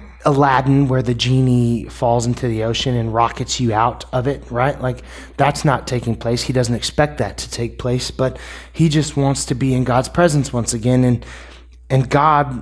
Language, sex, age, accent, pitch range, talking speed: English, male, 20-39, American, 120-140 Hz, 195 wpm